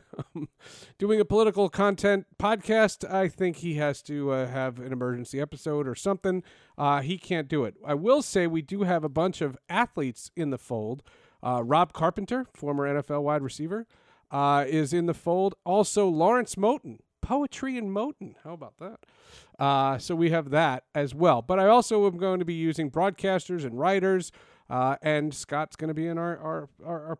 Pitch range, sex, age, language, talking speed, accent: 145-200 Hz, male, 40-59, English, 190 wpm, American